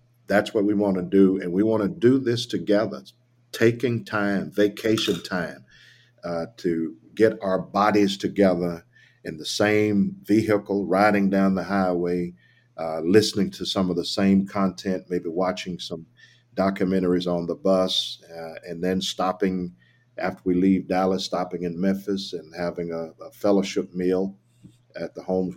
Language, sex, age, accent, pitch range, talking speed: English, male, 50-69, American, 90-105 Hz, 155 wpm